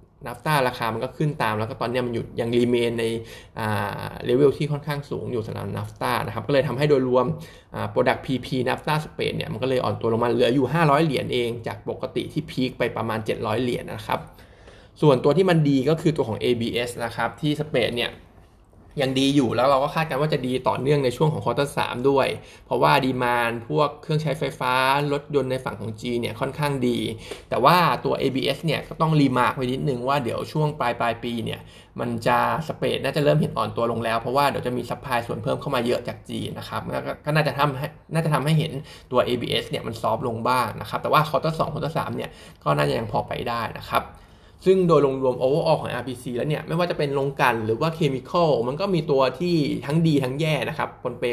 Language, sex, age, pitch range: Thai, male, 20-39, 120-150 Hz